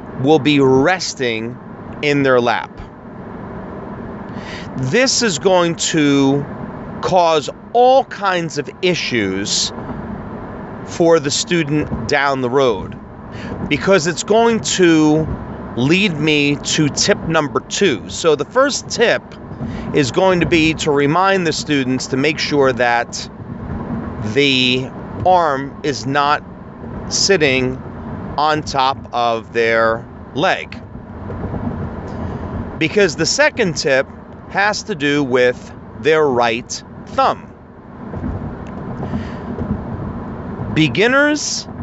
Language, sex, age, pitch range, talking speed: English, male, 40-59, 130-185 Hz, 100 wpm